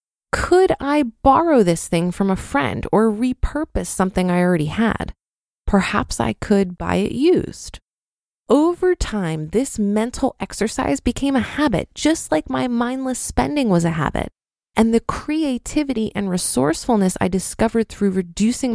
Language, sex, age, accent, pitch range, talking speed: English, female, 20-39, American, 185-260 Hz, 145 wpm